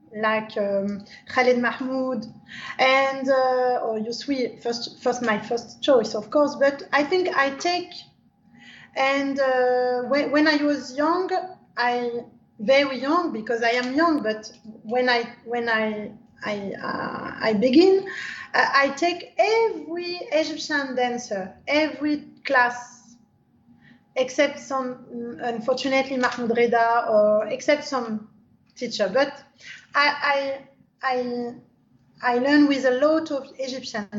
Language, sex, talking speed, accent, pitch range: English, female, 120 wpm, French, 235-285 Hz